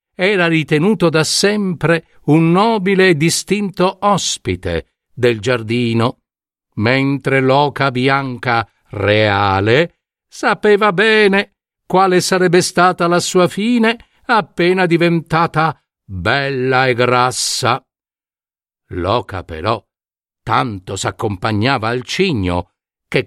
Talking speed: 90 wpm